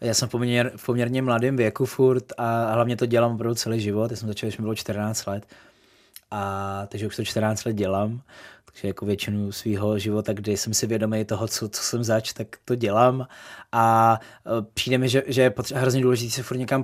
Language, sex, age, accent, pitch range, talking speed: Czech, male, 20-39, native, 110-125 Hz, 220 wpm